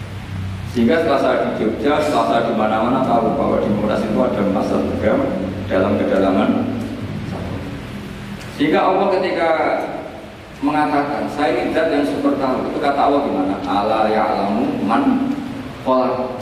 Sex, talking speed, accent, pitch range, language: male, 115 wpm, native, 115-160 Hz, Indonesian